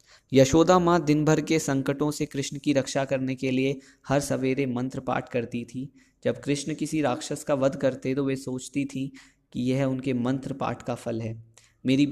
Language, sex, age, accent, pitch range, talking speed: Hindi, male, 20-39, native, 125-140 Hz, 195 wpm